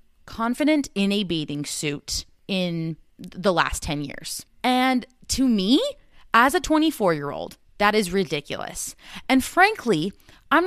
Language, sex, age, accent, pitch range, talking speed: English, female, 20-39, American, 165-240 Hz, 125 wpm